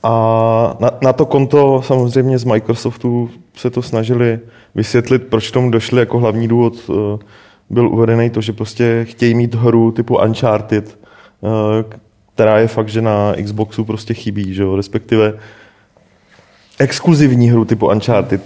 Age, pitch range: 20-39, 110-125 Hz